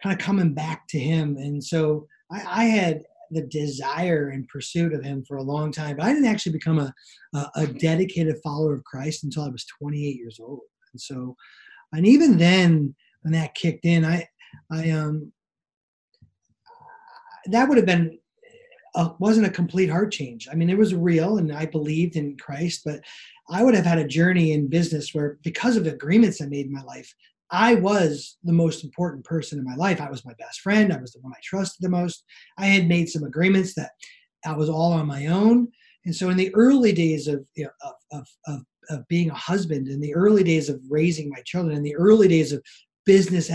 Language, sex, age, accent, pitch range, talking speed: English, male, 30-49, American, 150-185 Hz, 205 wpm